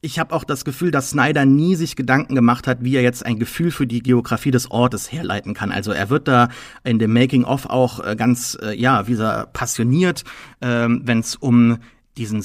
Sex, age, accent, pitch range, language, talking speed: male, 30-49, German, 120-140 Hz, German, 200 wpm